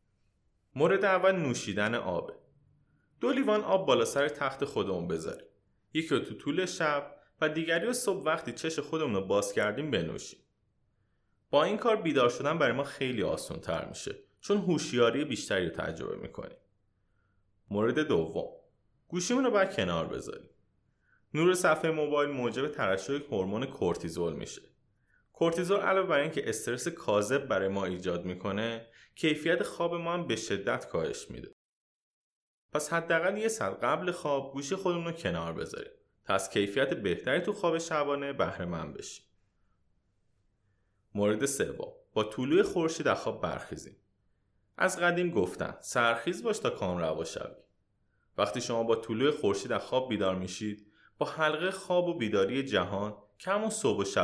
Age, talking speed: 30-49, 145 wpm